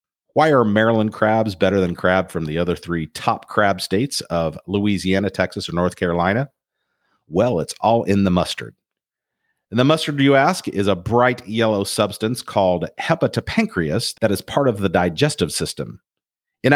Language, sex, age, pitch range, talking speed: English, male, 50-69, 90-120 Hz, 165 wpm